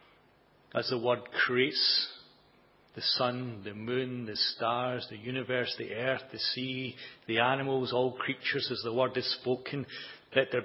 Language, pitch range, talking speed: English, 125-140 Hz, 150 wpm